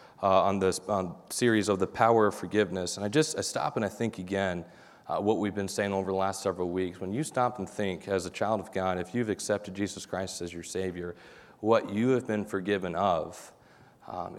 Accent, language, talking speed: American, English, 225 wpm